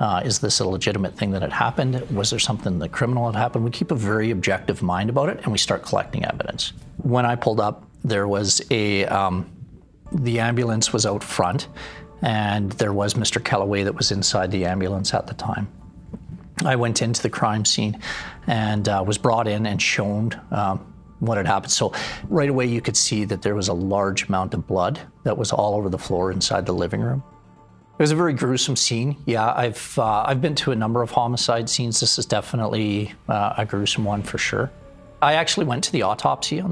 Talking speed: 210 wpm